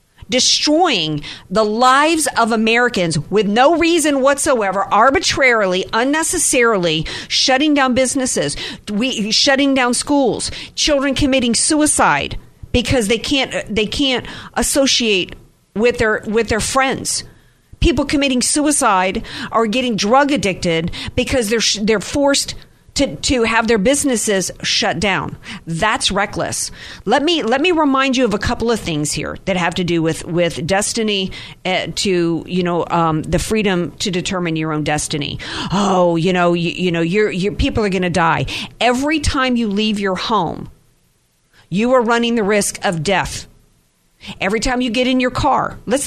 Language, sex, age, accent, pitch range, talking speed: English, female, 50-69, American, 180-255 Hz, 150 wpm